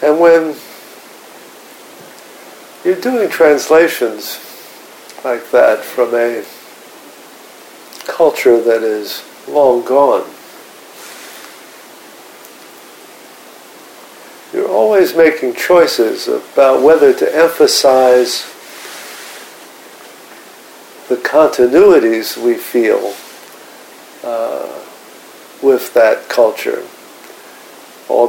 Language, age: English, 50-69